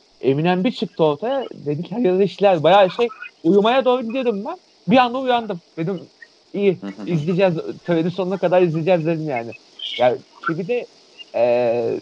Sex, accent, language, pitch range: male, native, Turkish, 155-230 Hz